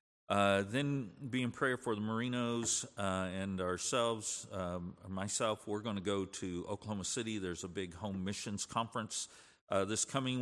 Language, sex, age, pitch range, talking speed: English, male, 50-69, 90-105 Hz, 165 wpm